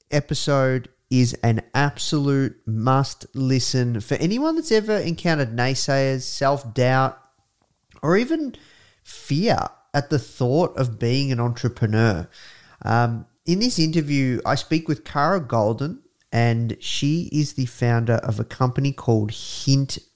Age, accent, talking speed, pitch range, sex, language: 30-49, Australian, 125 wpm, 115-140 Hz, male, English